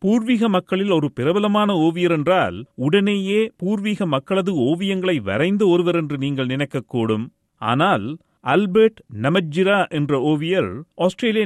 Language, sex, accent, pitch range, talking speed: Tamil, male, native, 145-200 Hz, 110 wpm